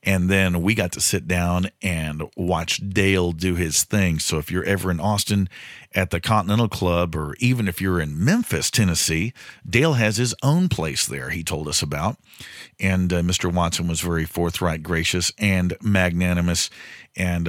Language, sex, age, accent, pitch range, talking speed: English, male, 40-59, American, 85-105 Hz, 175 wpm